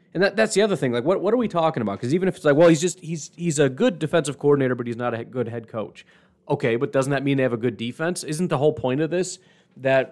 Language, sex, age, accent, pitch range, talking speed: English, male, 30-49, American, 115-145 Hz, 300 wpm